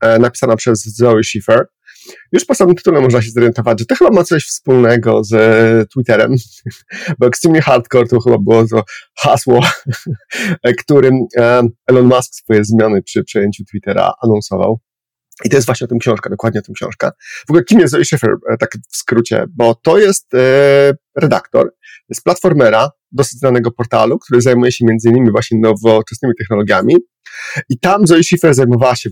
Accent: native